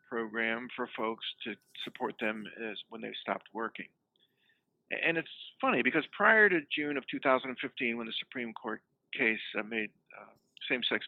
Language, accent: English, American